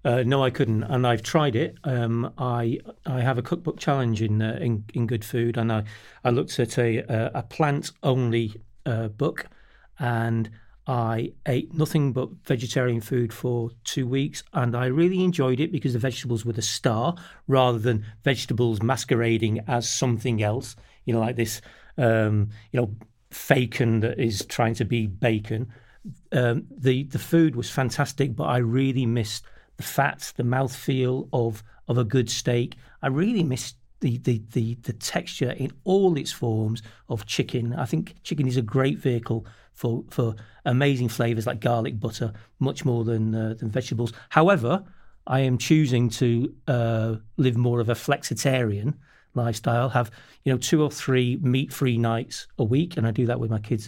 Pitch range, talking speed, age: 115-135 Hz, 175 wpm, 40-59